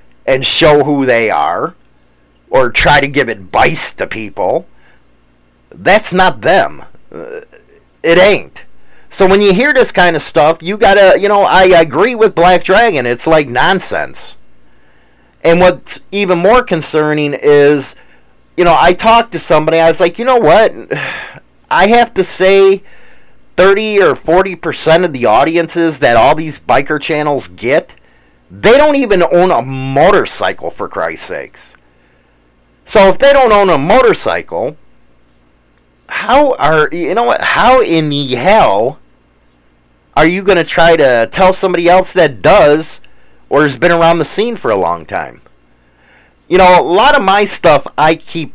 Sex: male